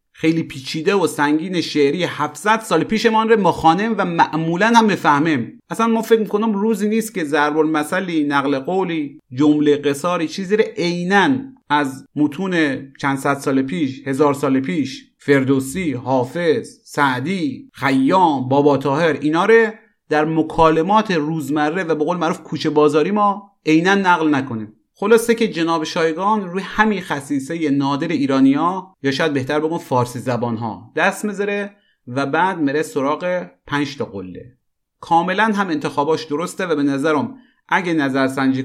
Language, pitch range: Persian, 140-185 Hz